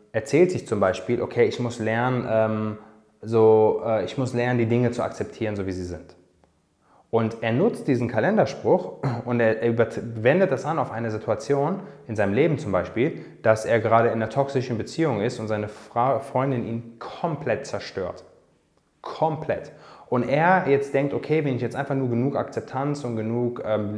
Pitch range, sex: 110-135 Hz, male